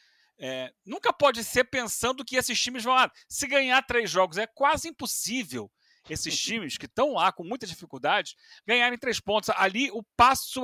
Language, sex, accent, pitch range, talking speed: Portuguese, male, Brazilian, 160-250 Hz, 175 wpm